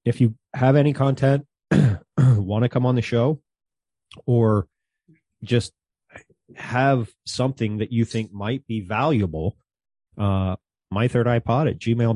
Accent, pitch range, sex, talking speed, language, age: American, 95-115 Hz, male, 135 wpm, English, 30-49